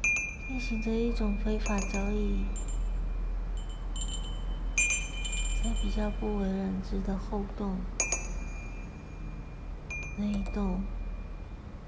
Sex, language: female, Chinese